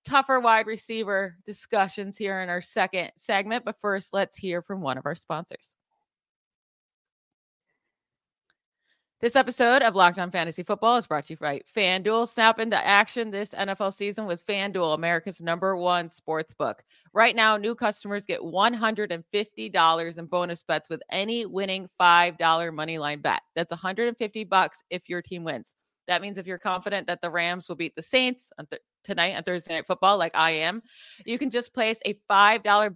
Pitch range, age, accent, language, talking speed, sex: 170-210 Hz, 30-49, American, English, 170 wpm, female